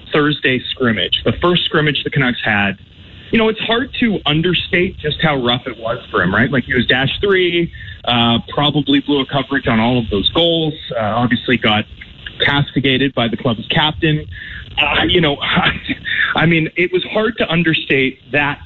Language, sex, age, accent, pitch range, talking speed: English, male, 30-49, American, 125-160 Hz, 185 wpm